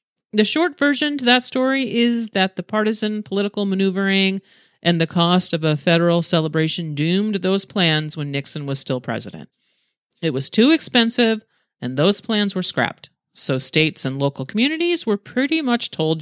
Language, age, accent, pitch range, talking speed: English, 40-59, American, 145-205 Hz, 165 wpm